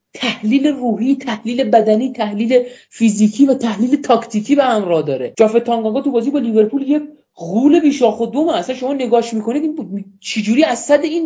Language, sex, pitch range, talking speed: Persian, male, 190-250 Hz, 165 wpm